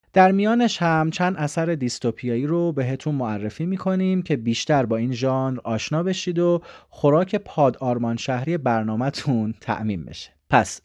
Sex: male